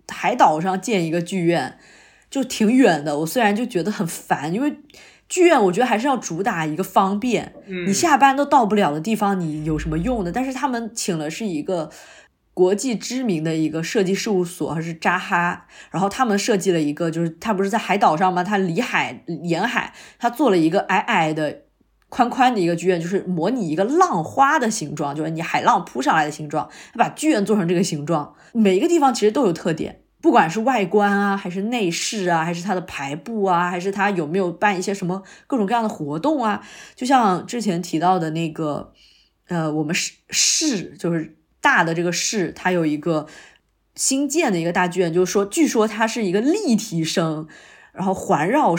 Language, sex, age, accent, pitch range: Chinese, female, 20-39, native, 170-225 Hz